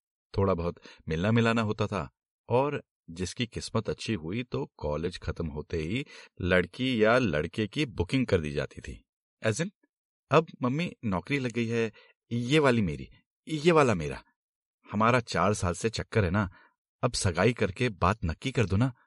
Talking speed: 165 wpm